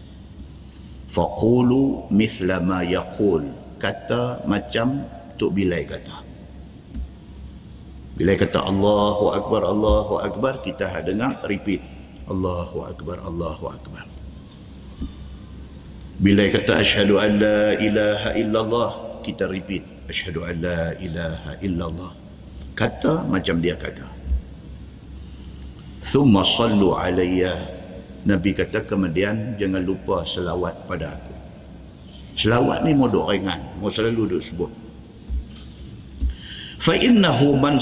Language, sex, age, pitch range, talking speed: Malay, male, 50-69, 75-105 Hz, 95 wpm